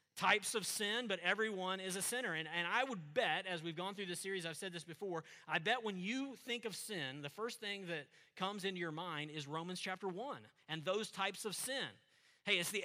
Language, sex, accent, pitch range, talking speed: English, male, American, 160-210 Hz, 235 wpm